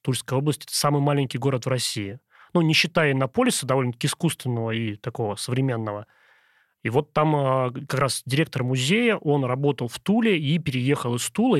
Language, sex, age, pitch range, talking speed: Russian, male, 30-49, 125-160 Hz, 170 wpm